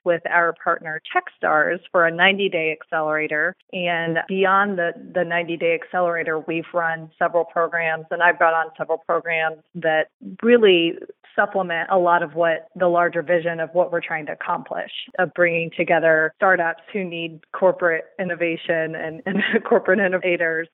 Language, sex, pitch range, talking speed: English, female, 165-185 Hz, 150 wpm